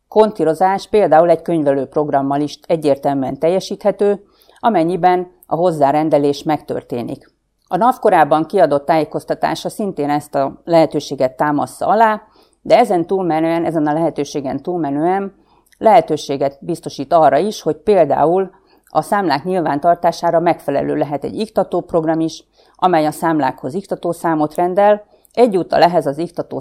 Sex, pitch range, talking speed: female, 150-190 Hz, 120 wpm